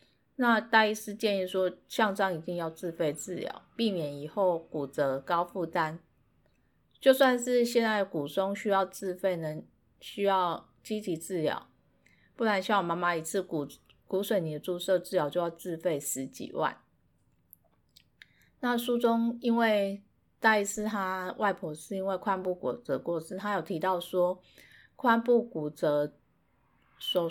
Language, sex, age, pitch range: Chinese, female, 30-49, 165-210 Hz